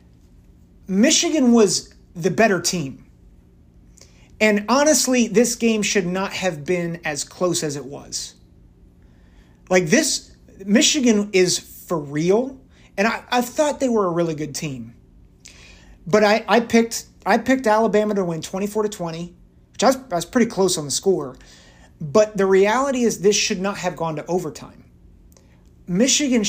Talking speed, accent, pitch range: 155 wpm, American, 160-225 Hz